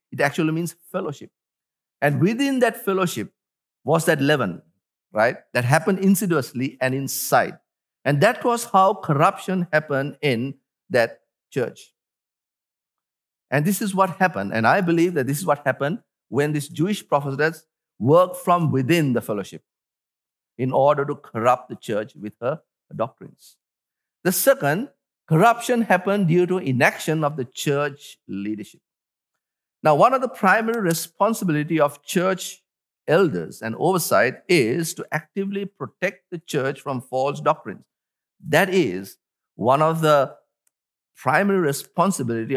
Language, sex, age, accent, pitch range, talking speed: English, male, 50-69, Malaysian, 140-190 Hz, 135 wpm